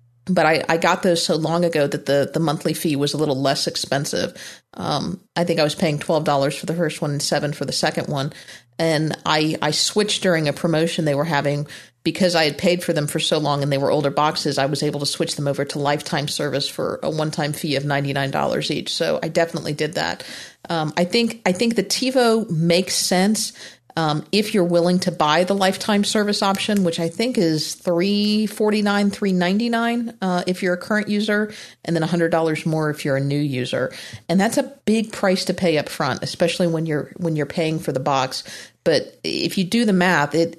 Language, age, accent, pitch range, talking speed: English, 40-59, American, 150-185 Hz, 215 wpm